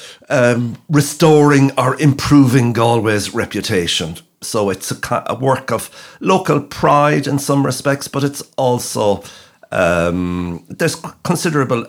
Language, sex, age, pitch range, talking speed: English, male, 60-79, 100-135 Hz, 115 wpm